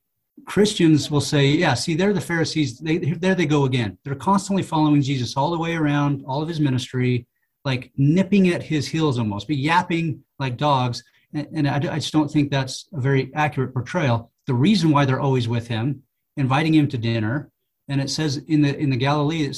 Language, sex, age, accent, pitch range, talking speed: English, male, 40-59, American, 135-155 Hz, 205 wpm